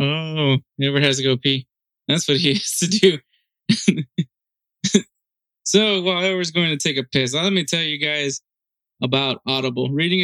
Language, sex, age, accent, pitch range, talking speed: English, male, 20-39, American, 130-150 Hz, 170 wpm